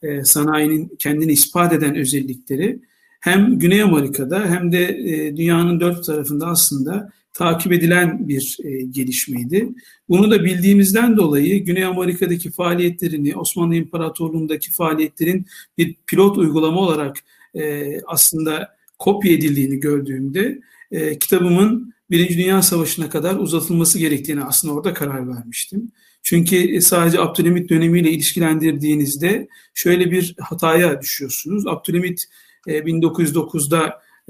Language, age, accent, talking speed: Turkish, 50-69, native, 100 wpm